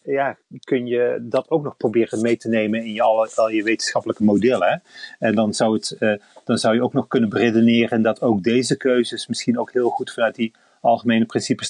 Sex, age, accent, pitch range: male, 30-49, Dutch, 105-125 Hz